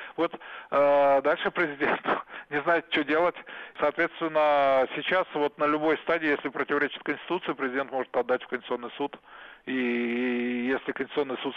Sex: male